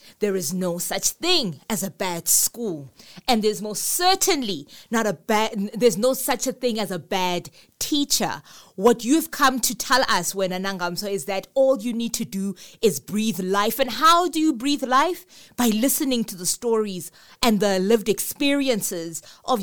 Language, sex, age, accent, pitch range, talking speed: English, female, 20-39, South African, 195-250 Hz, 180 wpm